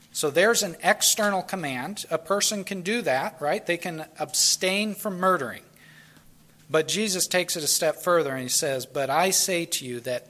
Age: 40-59